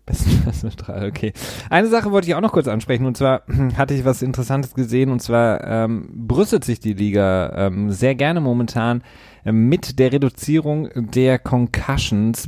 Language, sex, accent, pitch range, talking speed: German, male, German, 105-135 Hz, 155 wpm